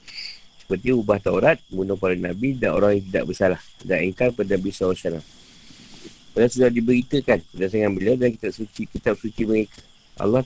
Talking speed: 155 wpm